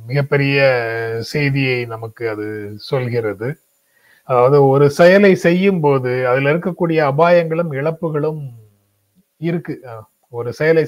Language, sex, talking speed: Tamil, male, 95 wpm